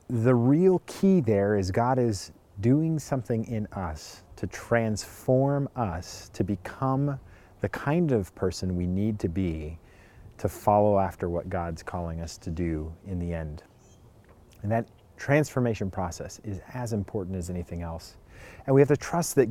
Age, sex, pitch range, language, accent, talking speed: 30-49, male, 95-125 Hz, English, American, 160 wpm